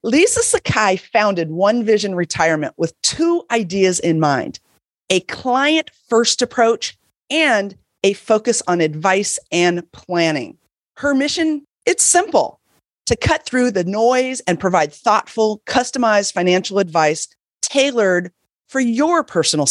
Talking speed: 120 wpm